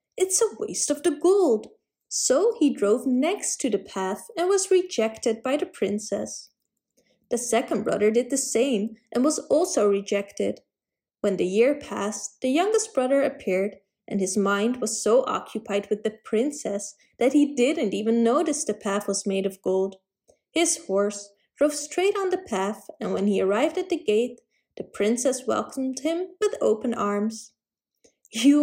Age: 20-39